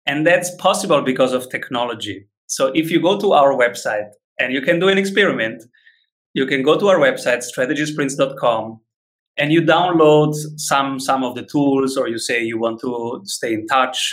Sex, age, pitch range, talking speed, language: male, 30-49, 135-195 Hz, 185 wpm, English